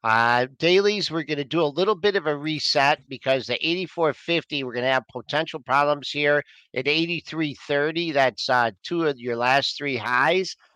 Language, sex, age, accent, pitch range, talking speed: English, male, 50-69, American, 130-175 Hz, 180 wpm